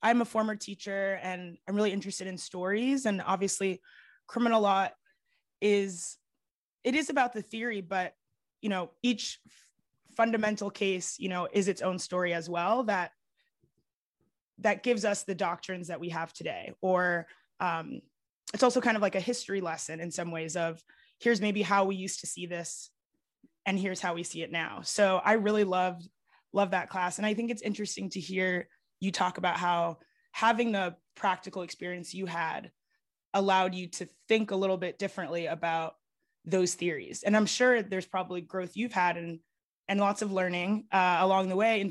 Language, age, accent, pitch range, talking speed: English, 20-39, American, 180-210 Hz, 180 wpm